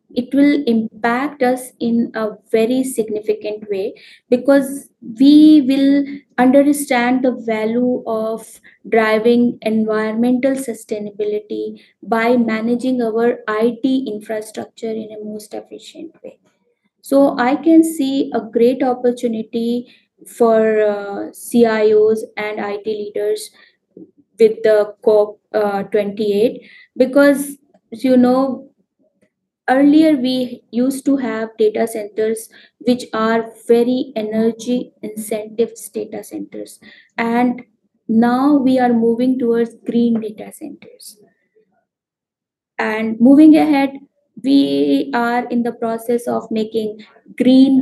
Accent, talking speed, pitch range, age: Indian, 105 wpm, 220-260 Hz, 20-39